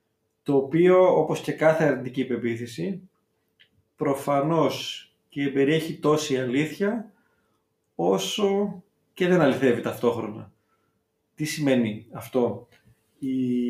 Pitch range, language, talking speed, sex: 125-160 Hz, Greek, 90 wpm, male